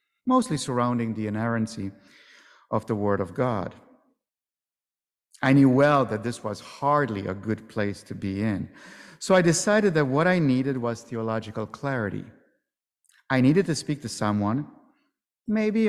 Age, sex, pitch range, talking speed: 50-69, male, 105-145 Hz, 145 wpm